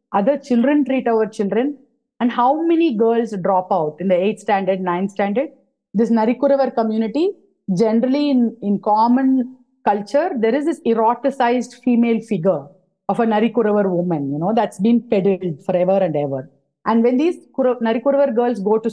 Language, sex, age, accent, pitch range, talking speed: English, female, 30-49, Indian, 205-260 Hz, 160 wpm